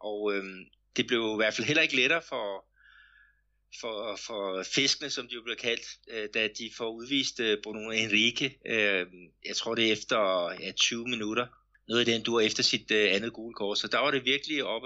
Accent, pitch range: native, 105-130 Hz